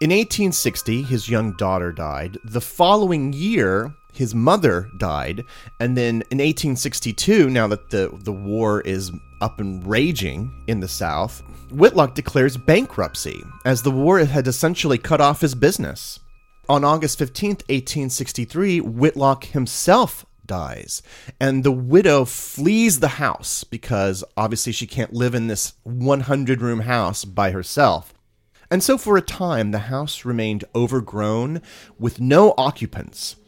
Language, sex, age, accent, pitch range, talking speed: English, male, 30-49, American, 105-145 Hz, 135 wpm